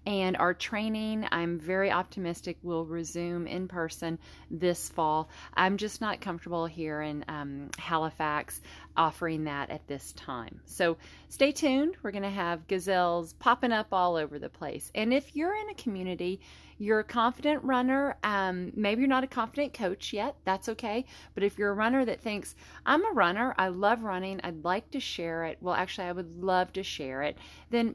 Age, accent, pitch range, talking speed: 40-59, American, 165-220 Hz, 180 wpm